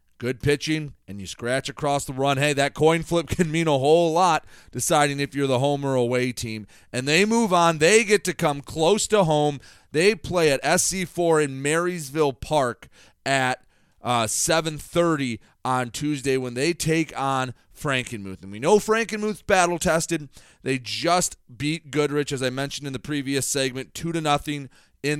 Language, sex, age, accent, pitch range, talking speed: English, male, 30-49, American, 125-165 Hz, 175 wpm